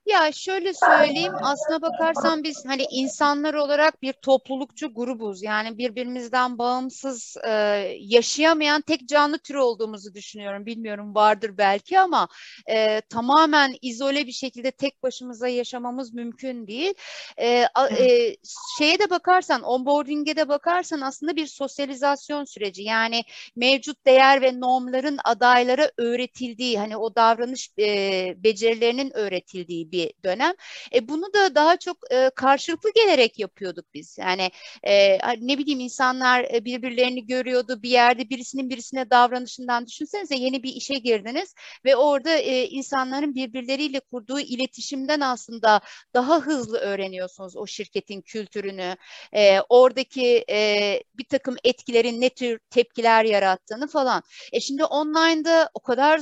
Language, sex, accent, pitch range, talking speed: Turkish, female, native, 230-295 Hz, 125 wpm